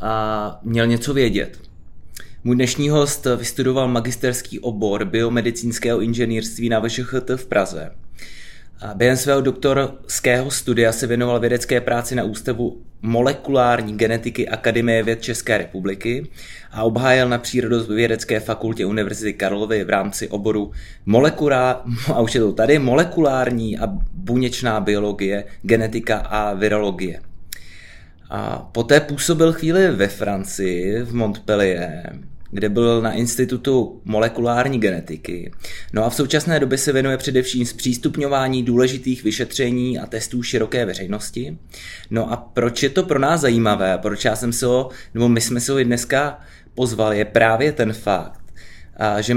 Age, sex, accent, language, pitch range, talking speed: 20-39, male, native, Czech, 105-125 Hz, 135 wpm